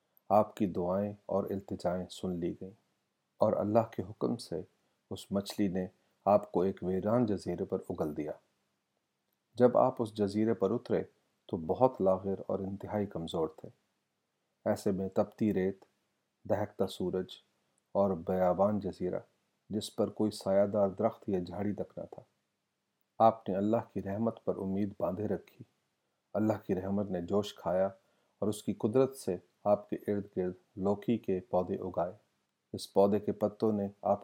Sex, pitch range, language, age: male, 95-105 Hz, Urdu, 40-59